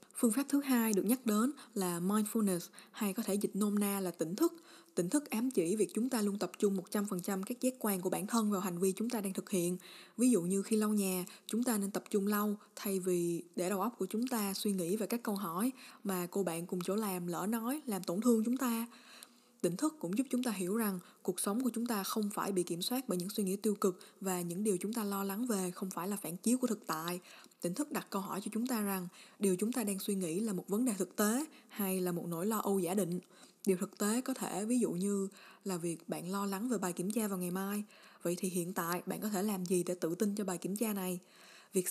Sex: female